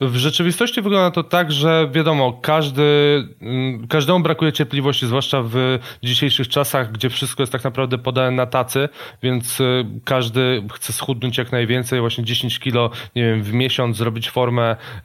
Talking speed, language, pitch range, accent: 150 wpm, Polish, 120-140 Hz, native